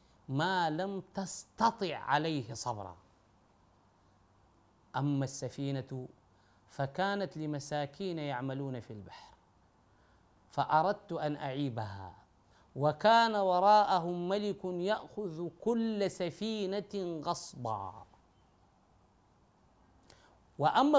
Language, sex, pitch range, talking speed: Arabic, male, 110-175 Hz, 65 wpm